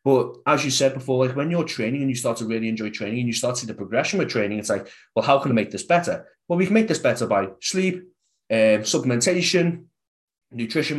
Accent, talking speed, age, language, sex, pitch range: British, 245 wpm, 20-39, English, male, 115-150 Hz